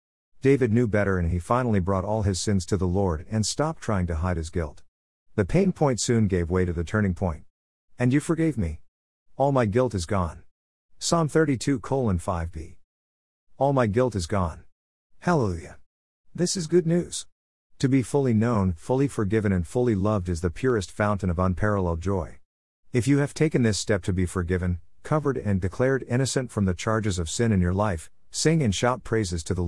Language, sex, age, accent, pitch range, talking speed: English, male, 50-69, American, 90-120 Hz, 190 wpm